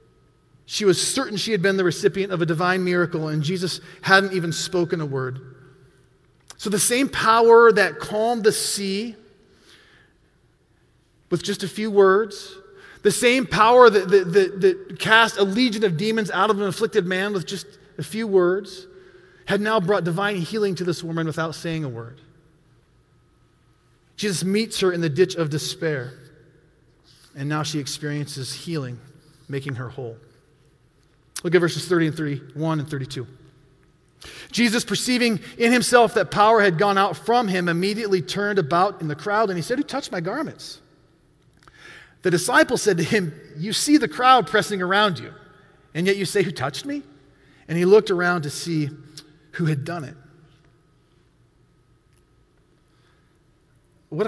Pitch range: 150-210 Hz